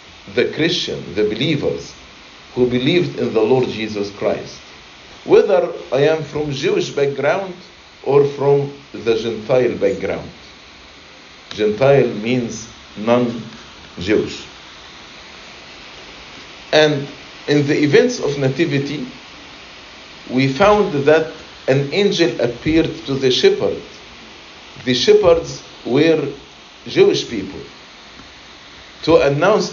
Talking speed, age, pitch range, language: 95 wpm, 50-69, 125-185 Hz, English